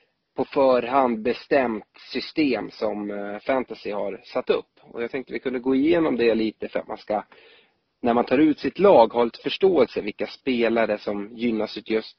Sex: male